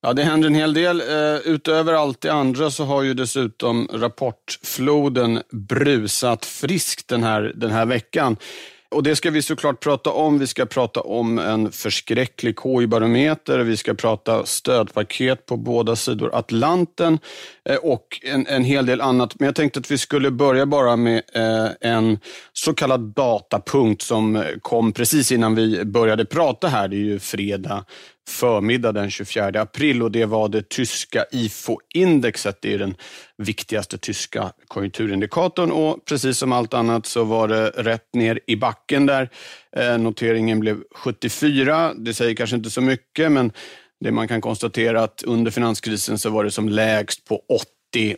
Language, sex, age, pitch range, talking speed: Swedish, male, 40-59, 110-140 Hz, 160 wpm